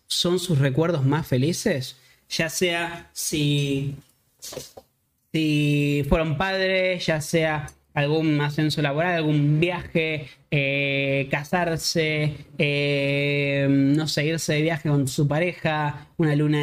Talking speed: 110 wpm